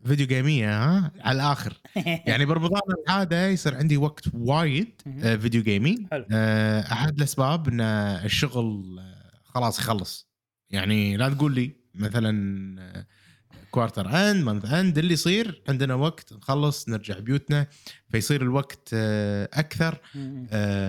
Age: 20-39